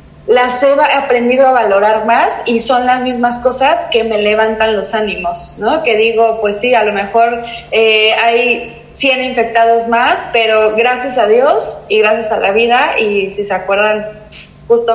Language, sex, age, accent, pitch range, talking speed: Spanish, female, 20-39, Mexican, 200-230 Hz, 175 wpm